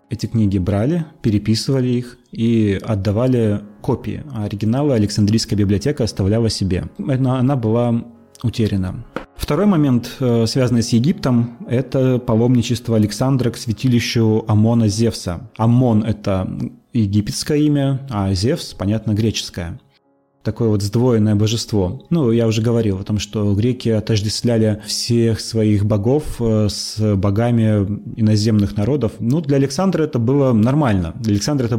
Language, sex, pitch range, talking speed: Russian, male, 105-125 Hz, 125 wpm